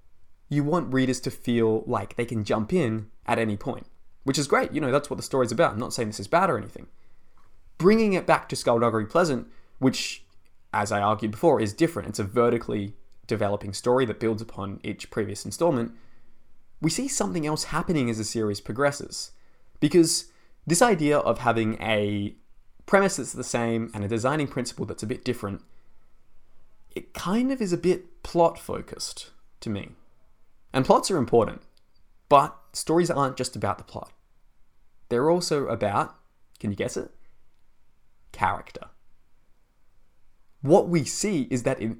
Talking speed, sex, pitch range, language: 165 wpm, male, 105-150 Hz, English